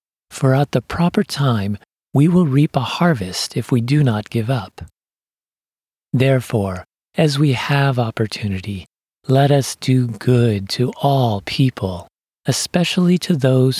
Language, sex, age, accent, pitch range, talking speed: English, male, 40-59, American, 110-145 Hz, 135 wpm